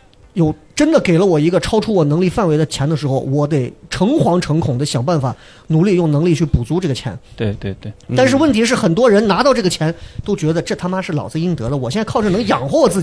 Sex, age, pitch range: male, 30-49, 135-185 Hz